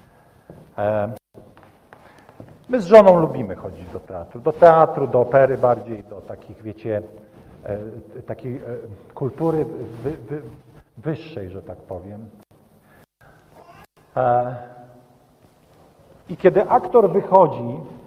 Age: 50-69